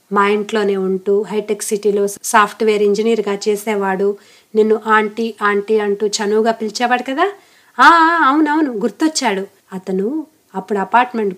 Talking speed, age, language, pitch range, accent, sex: 110 wpm, 30-49, Telugu, 190-225 Hz, native, female